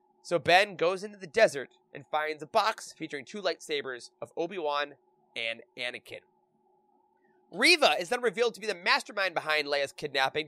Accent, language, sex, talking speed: American, English, male, 160 wpm